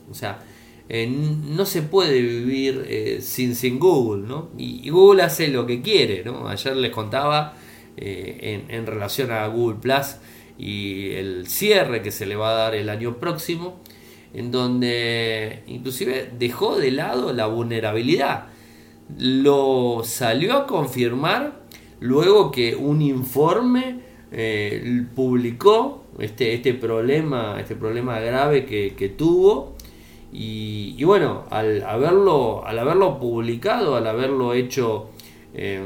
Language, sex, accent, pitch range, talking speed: Spanish, male, Argentinian, 110-140 Hz, 130 wpm